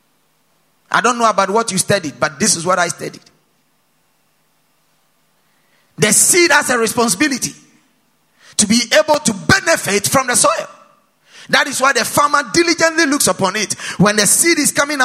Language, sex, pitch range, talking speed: English, male, 190-265 Hz, 160 wpm